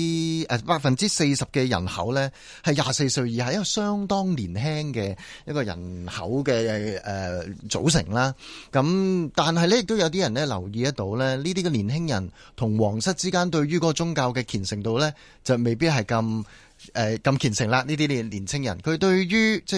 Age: 30-49